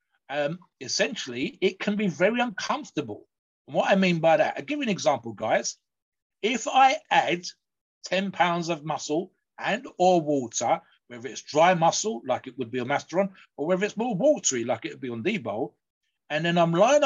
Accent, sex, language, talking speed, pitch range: British, male, English, 195 wpm, 140-195 Hz